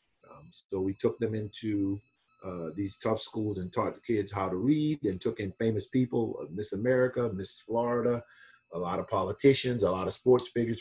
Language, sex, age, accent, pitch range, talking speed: English, male, 40-59, American, 95-120 Hz, 190 wpm